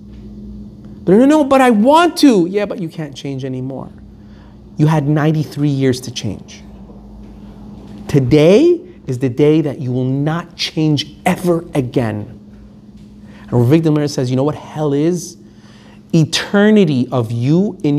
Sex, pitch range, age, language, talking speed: male, 120-175 Hz, 30-49, English, 140 wpm